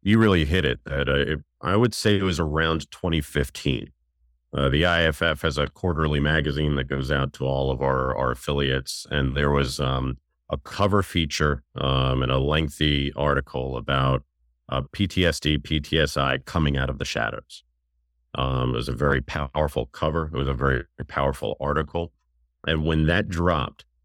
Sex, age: male, 40-59